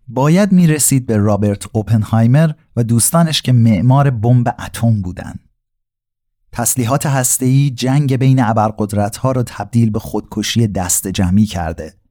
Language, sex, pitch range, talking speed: Persian, male, 105-135 Hz, 120 wpm